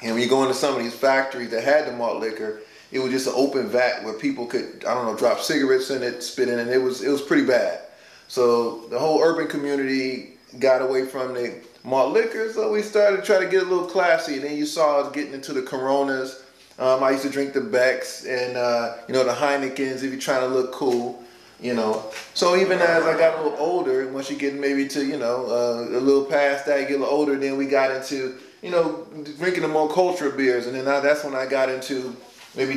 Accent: American